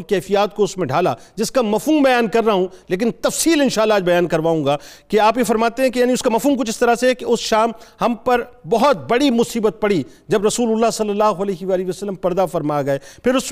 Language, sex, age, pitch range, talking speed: Urdu, male, 50-69, 175-225 Hz, 250 wpm